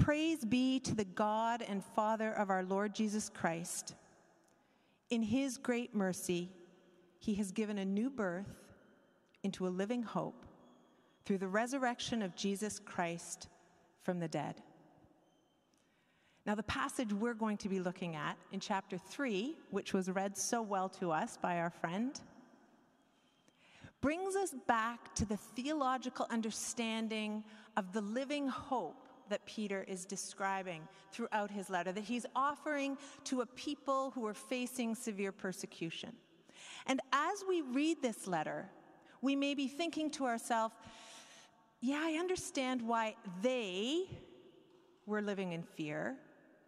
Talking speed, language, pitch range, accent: 140 wpm, English, 195-270 Hz, American